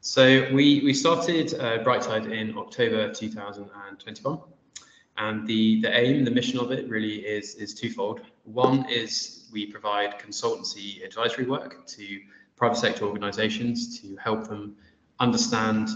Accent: British